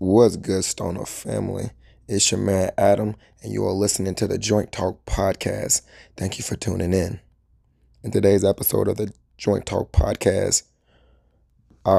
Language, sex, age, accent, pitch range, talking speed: English, male, 20-39, American, 95-105 Hz, 155 wpm